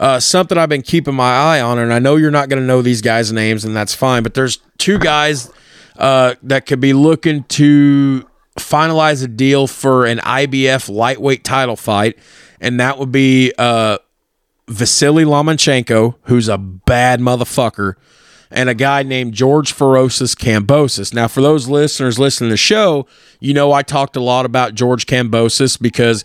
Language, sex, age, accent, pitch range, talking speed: English, male, 30-49, American, 120-140 Hz, 175 wpm